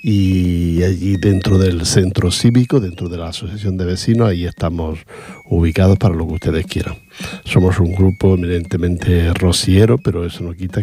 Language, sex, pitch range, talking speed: Portuguese, male, 85-100 Hz, 160 wpm